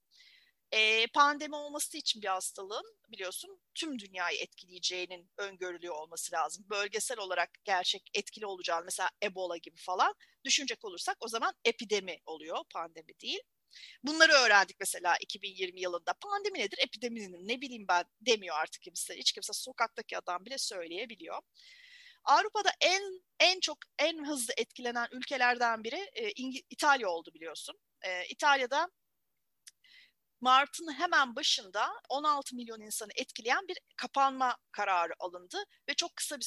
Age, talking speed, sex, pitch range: 30-49, 135 wpm, female, 195-315 Hz